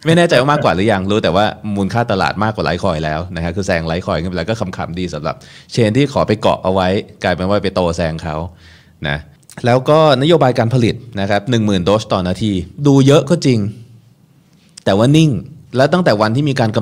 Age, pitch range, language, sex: 20-39, 90-125 Hz, Thai, male